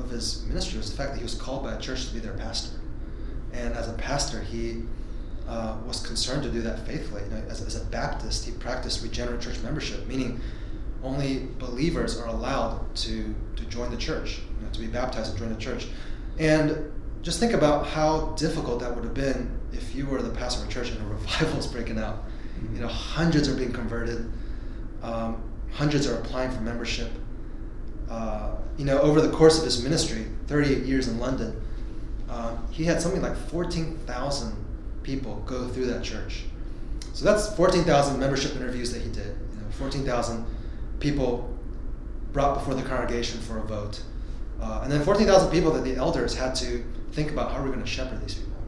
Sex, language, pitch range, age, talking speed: male, English, 110-135 Hz, 30-49, 195 wpm